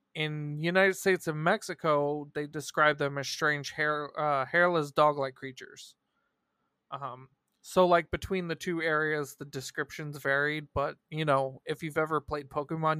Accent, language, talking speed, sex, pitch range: American, English, 150 wpm, male, 140-175 Hz